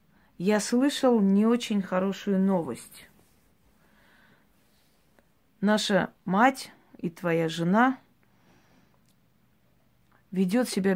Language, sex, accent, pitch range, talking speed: Russian, female, native, 180-235 Hz, 70 wpm